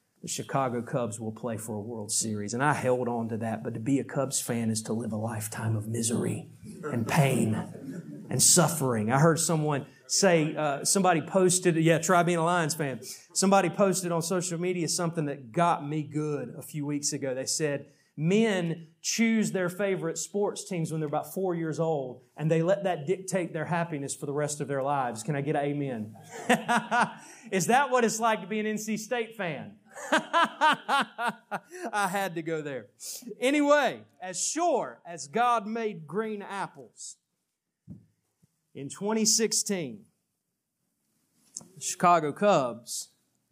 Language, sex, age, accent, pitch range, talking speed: English, male, 30-49, American, 135-195 Hz, 165 wpm